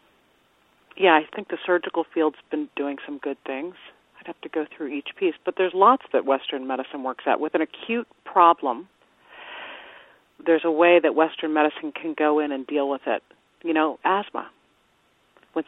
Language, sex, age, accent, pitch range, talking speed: English, female, 40-59, American, 145-180 Hz, 180 wpm